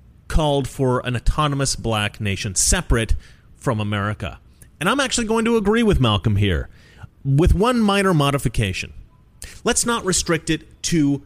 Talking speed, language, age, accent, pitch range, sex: 145 wpm, English, 30-49, American, 105-170 Hz, male